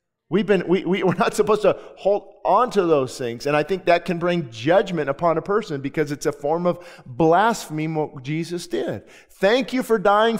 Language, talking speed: English, 200 wpm